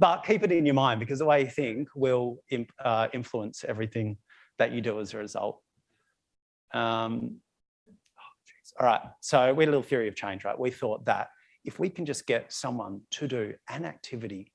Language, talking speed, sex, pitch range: English, 200 wpm, male, 105-140 Hz